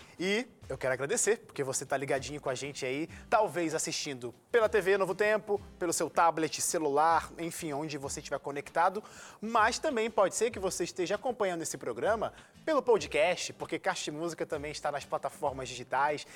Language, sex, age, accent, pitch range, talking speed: Portuguese, male, 20-39, Brazilian, 150-210 Hz, 170 wpm